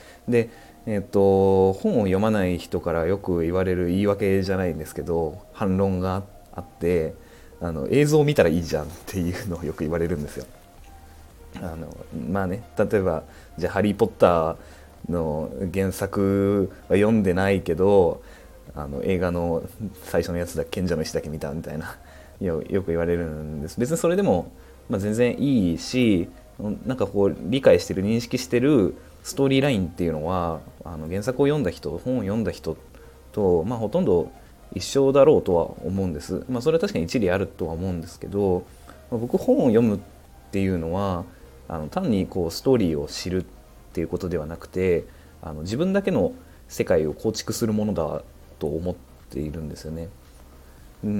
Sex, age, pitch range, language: male, 20-39, 80-105 Hz, Japanese